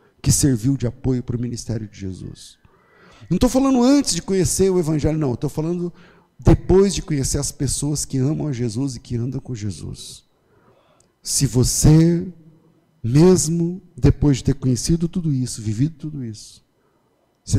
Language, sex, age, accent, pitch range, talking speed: Portuguese, male, 50-69, Brazilian, 115-150 Hz, 160 wpm